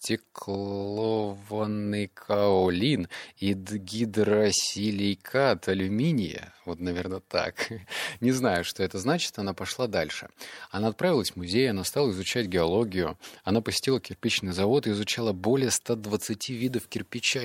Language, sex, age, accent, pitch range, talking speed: Russian, male, 30-49, native, 95-125 Hz, 115 wpm